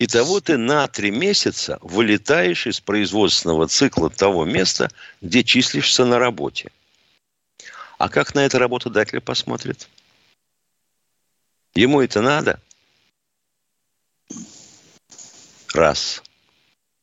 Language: Russian